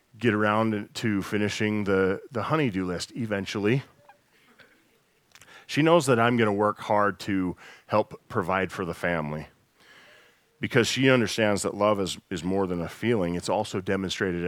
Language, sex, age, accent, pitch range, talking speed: English, male, 40-59, American, 95-115 Hz, 160 wpm